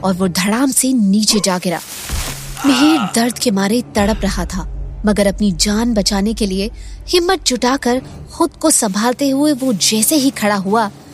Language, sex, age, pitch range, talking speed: Hindi, female, 20-39, 200-280 Hz, 165 wpm